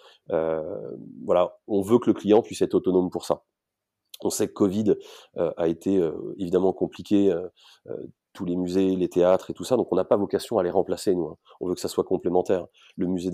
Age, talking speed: 30-49, 220 wpm